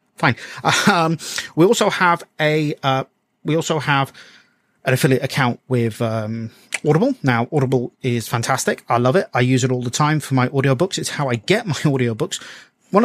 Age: 30-49